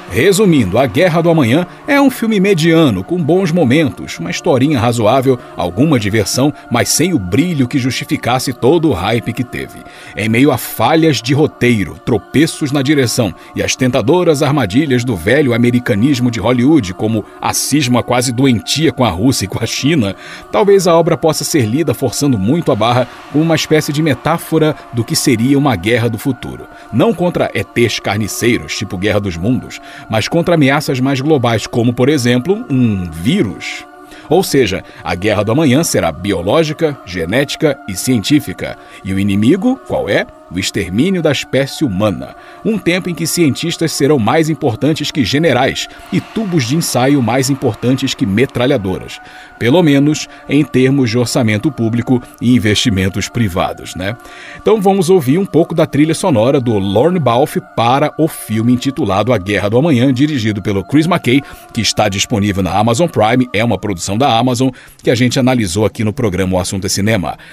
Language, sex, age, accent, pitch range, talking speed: Portuguese, male, 40-59, Brazilian, 115-155 Hz, 170 wpm